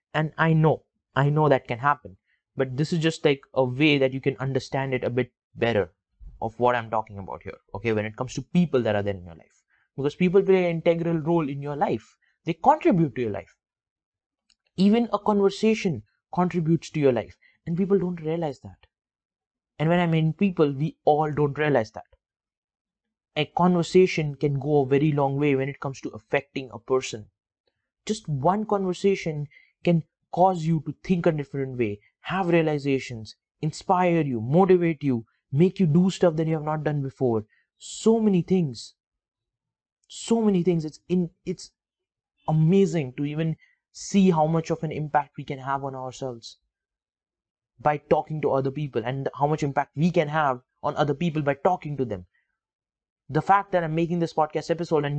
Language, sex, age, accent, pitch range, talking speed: English, male, 20-39, Indian, 135-175 Hz, 185 wpm